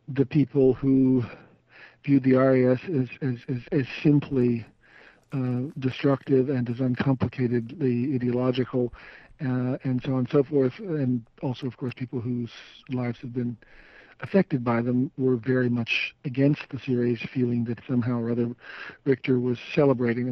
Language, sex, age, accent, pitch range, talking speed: English, male, 50-69, American, 125-140 Hz, 150 wpm